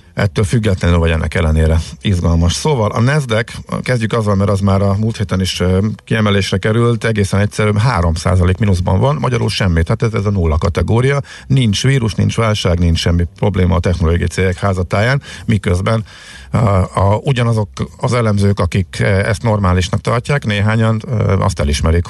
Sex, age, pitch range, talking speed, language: male, 50-69, 90-115 Hz, 155 wpm, Hungarian